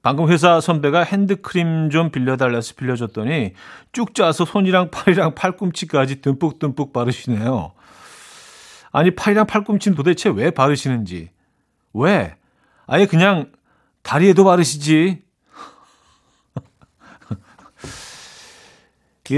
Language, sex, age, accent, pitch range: Korean, male, 40-59, native, 125-175 Hz